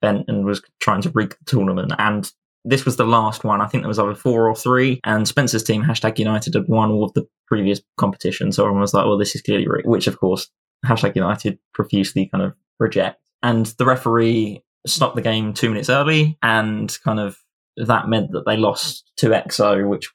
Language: English